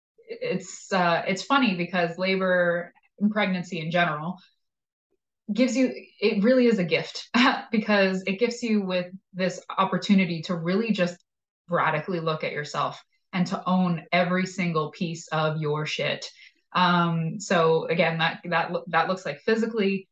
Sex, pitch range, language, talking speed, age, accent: female, 170-205 Hz, English, 150 wpm, 20-39, American